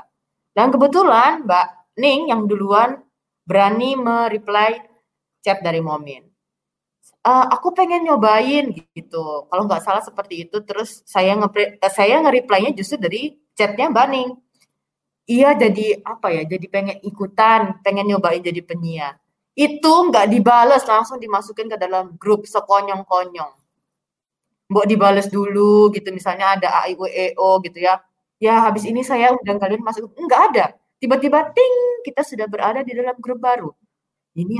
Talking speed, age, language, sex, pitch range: 135 wpm, 20-39, Indonesian, female, 180-225 Hz